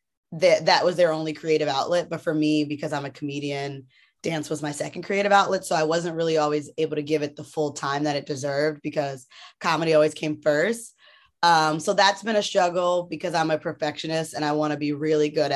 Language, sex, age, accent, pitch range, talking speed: English, female, 20-39, American, 150-175 Hz, 220 wpm